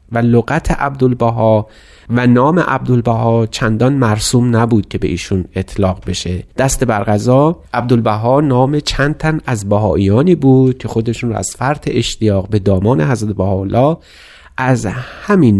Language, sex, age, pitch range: Persian, male, 30-49, 95-130 Hz